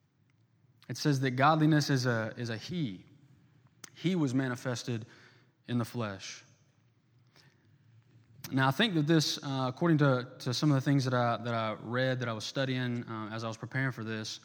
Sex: male